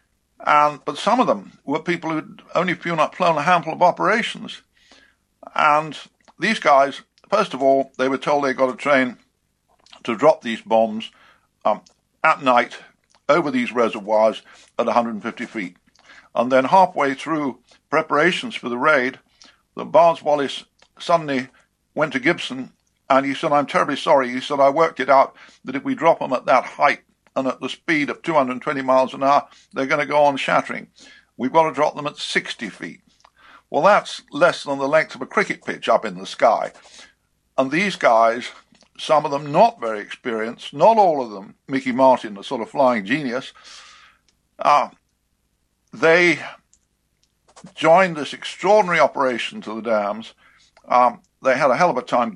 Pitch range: 125-155 Hz